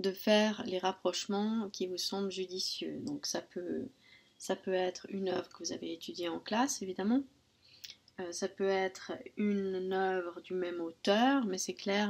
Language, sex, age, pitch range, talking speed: French, female, 20-39, 180-215 Hz, 175 wpm